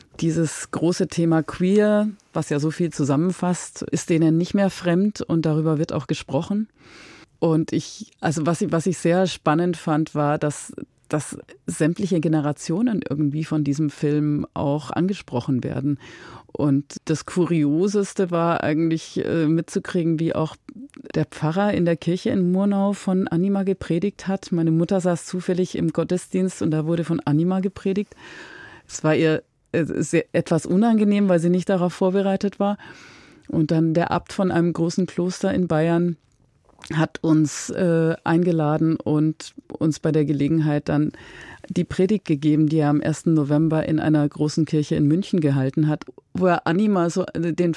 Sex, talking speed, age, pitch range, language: female, 155 wpm, 30-49, 155-185 Hz, German